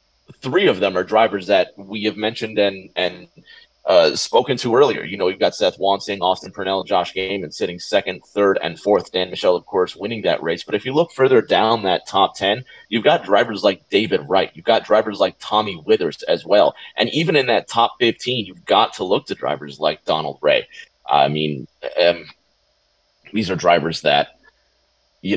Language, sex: English, male